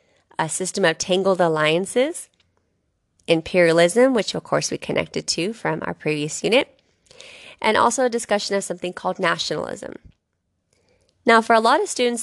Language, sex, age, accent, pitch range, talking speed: English, female, 30-49, American, 170-215 Hz, 145 wpm